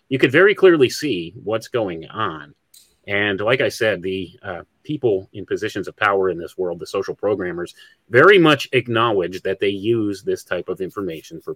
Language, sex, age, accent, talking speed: English, male, 30-49, American, 185 wpm